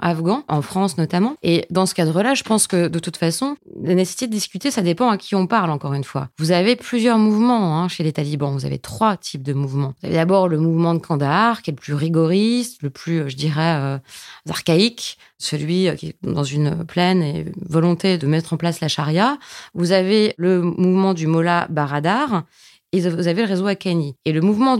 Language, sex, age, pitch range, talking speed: French, female, 20-39, 155-205 Hz, 215 wpm